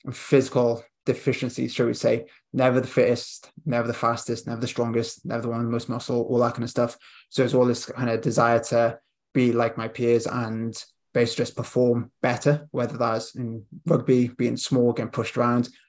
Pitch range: 115-125 Hz